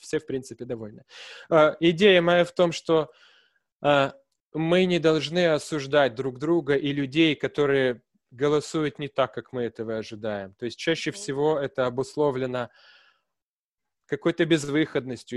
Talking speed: 135 wpm